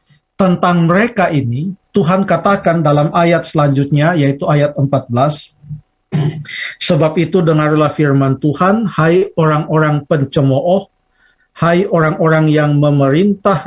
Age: 50-69